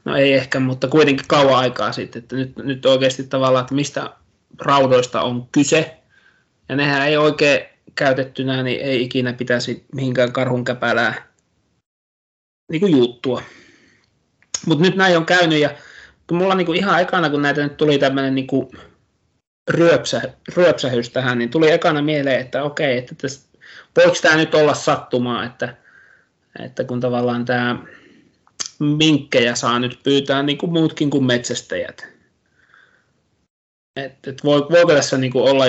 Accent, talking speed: native, 145 wpm